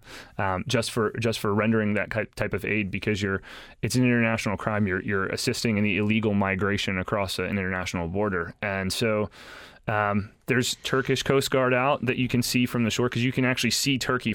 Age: 30-49